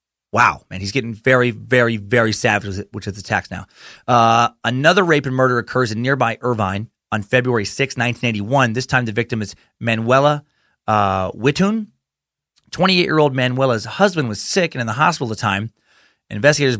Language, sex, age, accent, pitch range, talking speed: English, male, 30-49, American, 105-130 Hz, 165 wpm